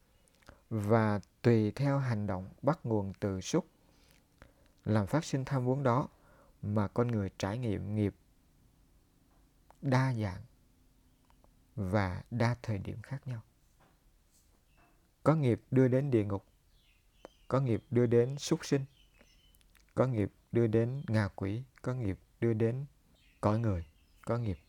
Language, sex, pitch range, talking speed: Vietnamese, male, 95-125 Hz, 135 wpm